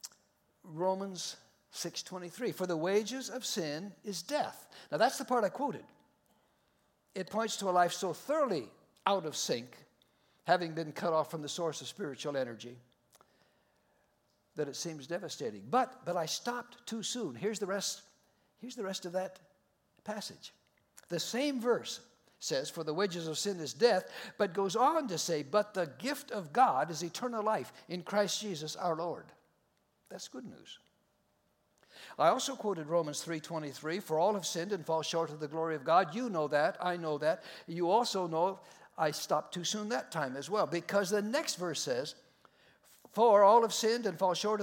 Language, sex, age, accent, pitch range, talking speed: English, male, 60-79, American, 165-215 Hz, 175 wpm